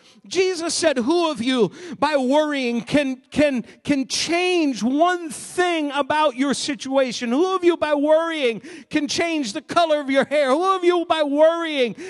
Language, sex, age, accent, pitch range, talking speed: English, male, 50-69, American, 270-335 Hz, 165 wpm